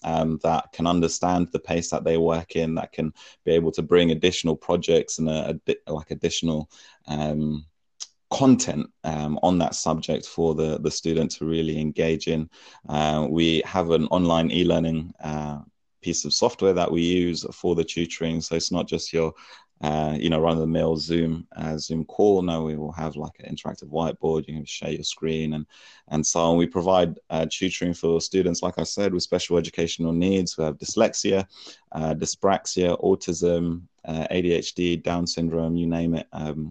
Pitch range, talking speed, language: 80-85 Hz, 175 wpm, English